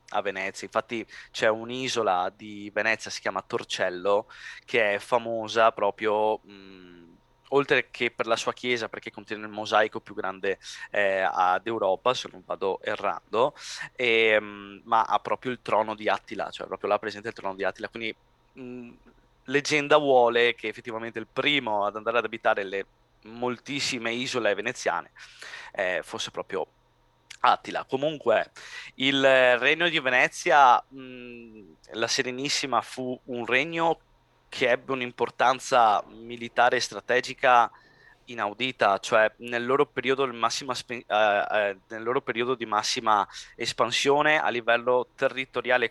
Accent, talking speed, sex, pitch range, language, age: native, 140 wpm, male, 105-125 Hz, Italian, 20-39